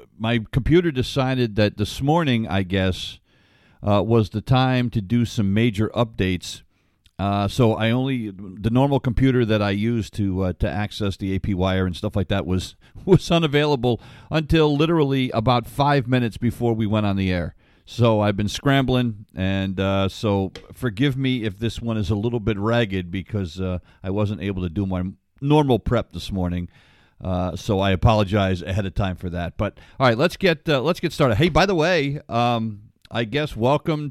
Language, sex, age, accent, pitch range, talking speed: English, male, 50-69, American, 95-135 Hz, 190 wpm